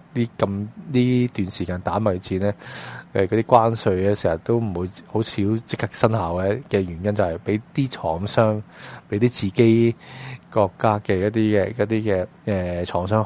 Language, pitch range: Chinese, 100-125 Hz